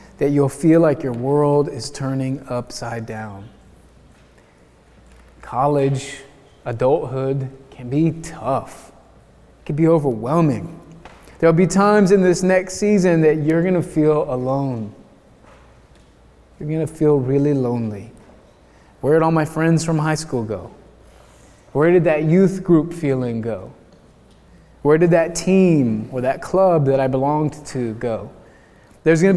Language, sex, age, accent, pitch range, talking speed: English, male, 20-39, American, 135-165 Hz, 135 wpm